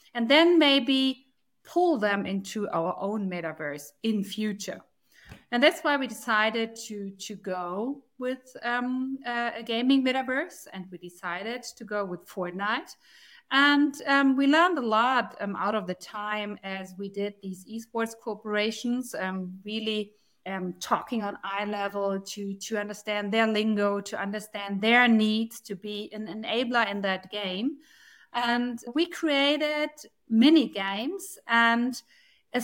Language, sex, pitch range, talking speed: English, female, 200-245 Hz, 145 wpm